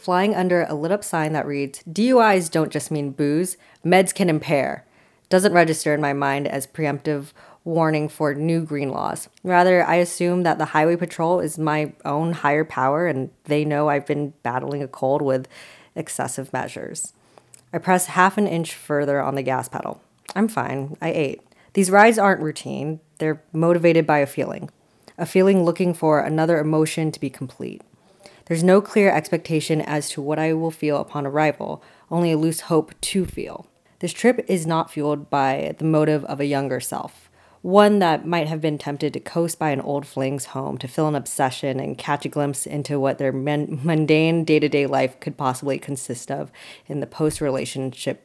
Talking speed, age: 185 wpm, 20-39